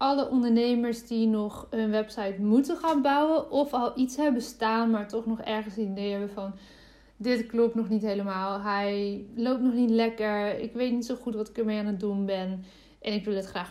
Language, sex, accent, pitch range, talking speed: Dutch, female, Dutch, 215-260 Hz, 210 wpm